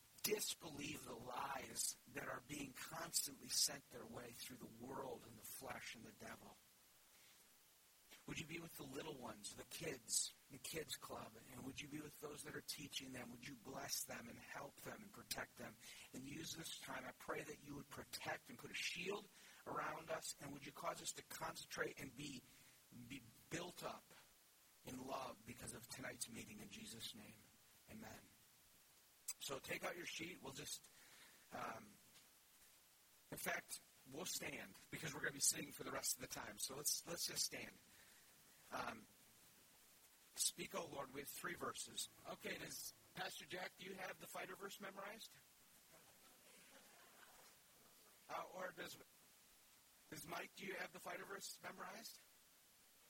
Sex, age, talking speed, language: male, 50-69, 165 wpm, English